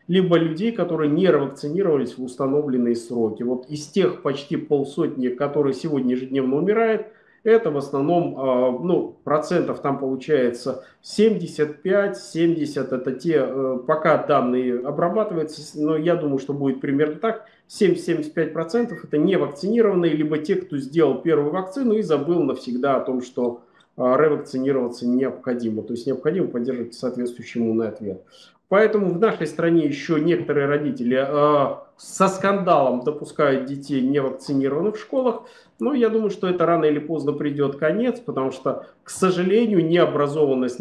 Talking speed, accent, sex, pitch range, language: 135 wpm, native, male, 135-175 Hz, Russian